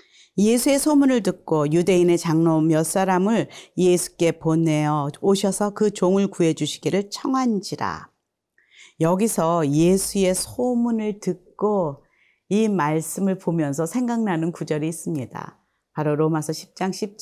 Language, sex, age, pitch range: Korean, female, 40-59, 165-220 Hz